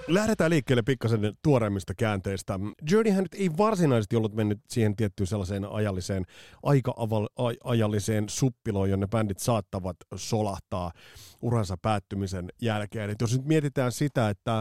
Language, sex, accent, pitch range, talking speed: Finnish, male, native, 105-130 Hz, 125 wpm